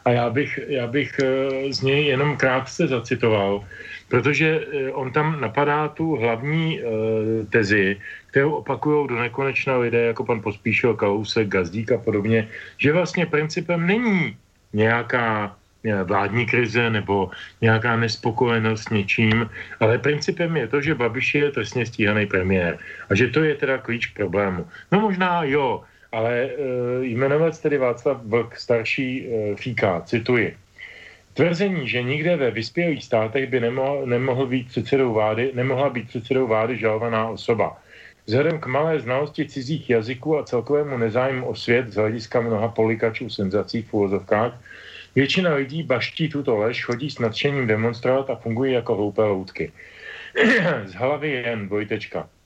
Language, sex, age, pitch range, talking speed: Slovak, male, 40-59, 110-140 Hz, 140 wpm